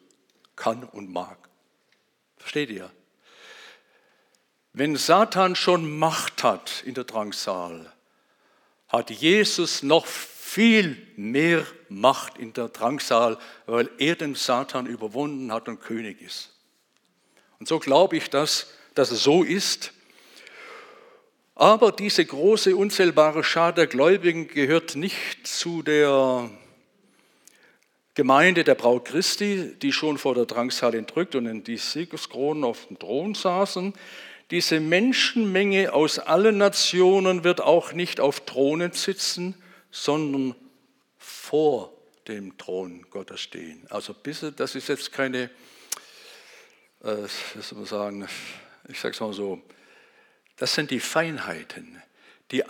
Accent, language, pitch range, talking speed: German, German, 125-195 Hz, 115 wpm